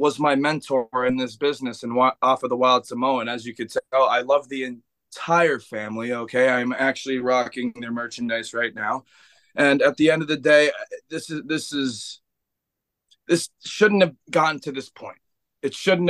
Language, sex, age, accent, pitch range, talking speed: English, male, 20-39, American, 130-180 Hz, 185 wpm